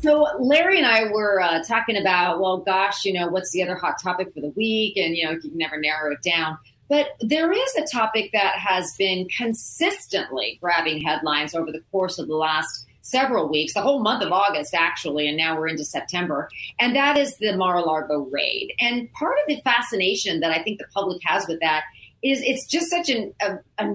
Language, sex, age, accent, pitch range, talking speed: English, female, 40-59, American, 170-245 Hz, 210 wpm